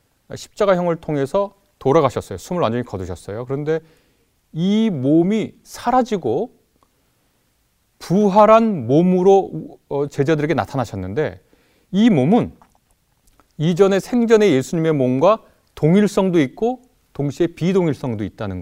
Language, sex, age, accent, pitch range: Korean, male, 30-49, native, 125-205 Hz